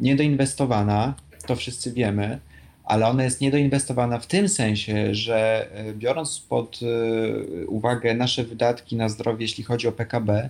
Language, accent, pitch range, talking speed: Polish, native, 110-135 Hz, 130 wpm